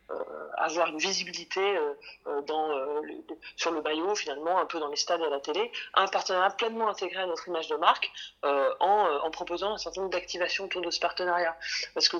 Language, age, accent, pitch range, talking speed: French, 30-49, French, 175-235 Hz, 225 wpm